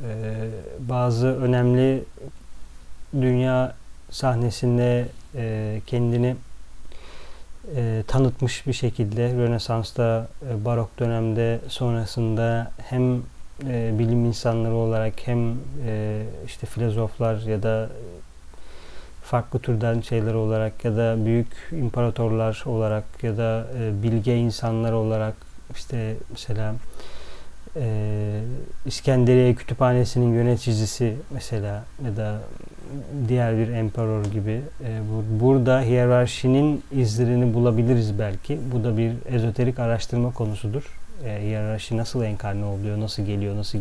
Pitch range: 110-125 Hz